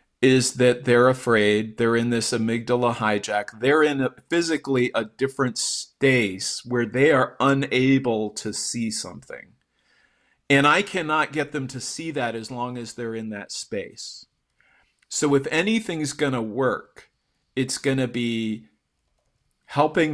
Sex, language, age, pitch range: male, English, 40-59, 110-135 Hz